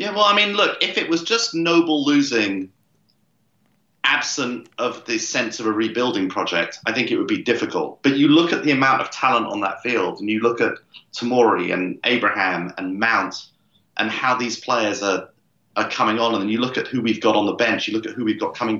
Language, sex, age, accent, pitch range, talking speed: English, male, 30-49, British, 110-165 Hz, 225 wpm